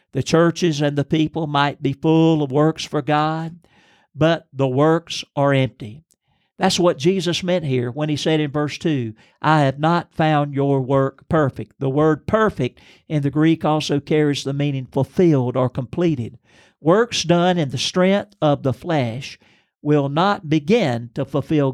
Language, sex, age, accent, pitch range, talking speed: English, male, 50-69, American, 130-155 Hz, 170 wpm